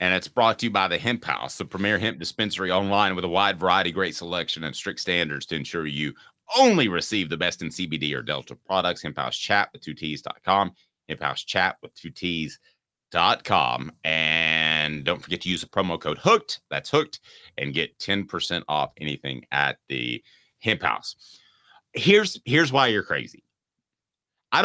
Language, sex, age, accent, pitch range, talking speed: English, male, 30-49, American, 85-120 Hz, 185 wpm